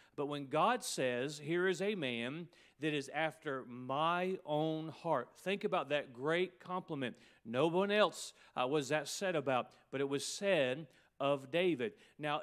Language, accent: English, American